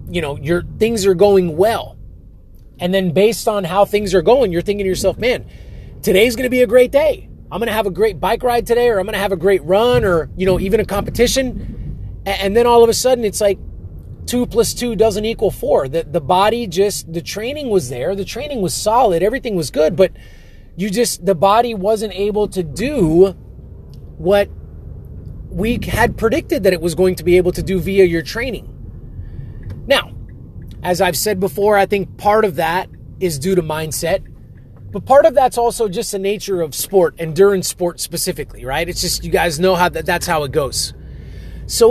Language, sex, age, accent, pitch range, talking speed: English, male, 30-49, American, 165-220 Hz, 205 wpm